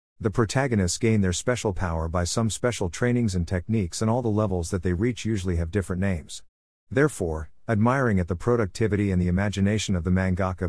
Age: 50-69